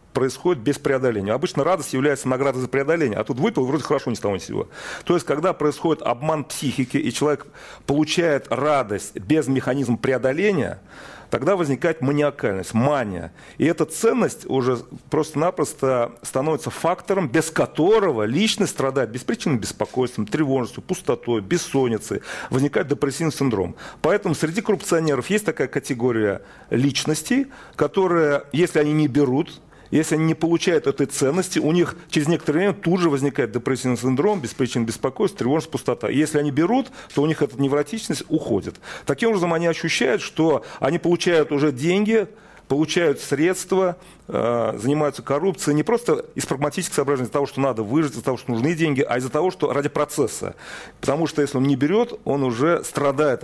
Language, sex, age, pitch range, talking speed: Russian, male, 40-59, 135-175 Hz, 155 wpm